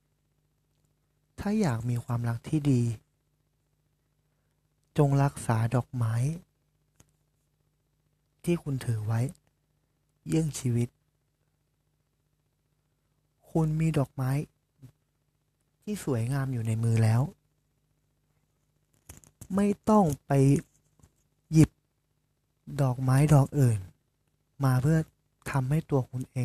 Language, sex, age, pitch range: Thai, male, 20-39, 120-145 Hz